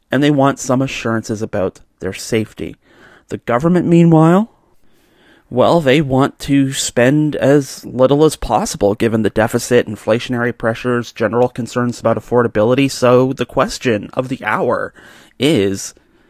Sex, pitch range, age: male, 110-140 Hz, 30-49